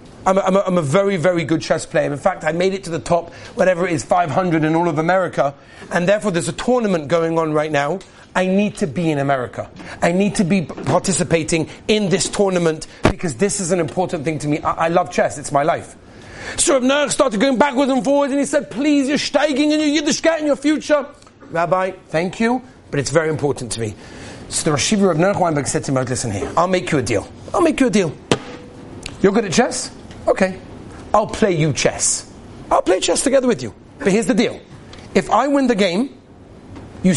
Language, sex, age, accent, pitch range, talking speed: English, male, 30-49, British, 160-235 Hz, 220 wpm